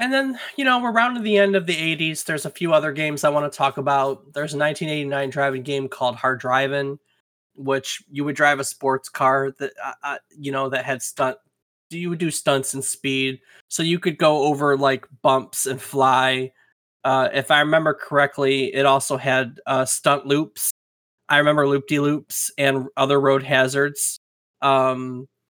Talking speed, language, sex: 185 wpm, English, male